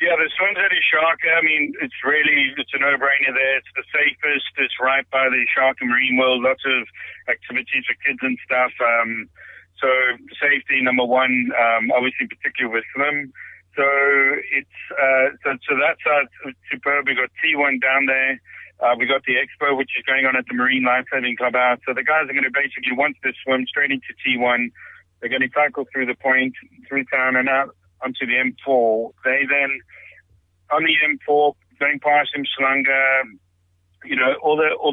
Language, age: English, 50-69